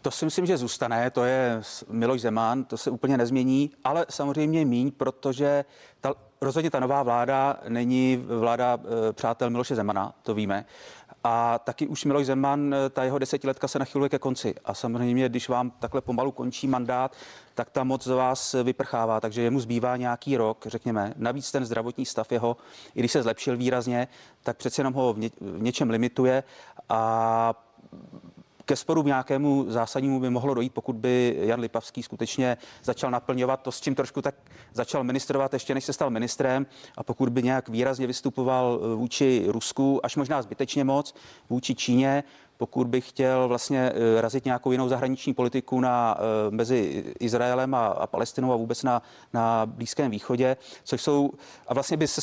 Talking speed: 165 wpm